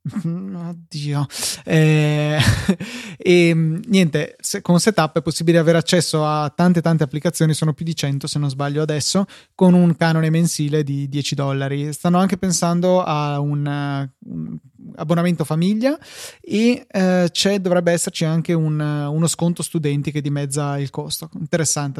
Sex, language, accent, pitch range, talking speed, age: male, Italian, native, 150-190 Hz, 145 wpm, 20-39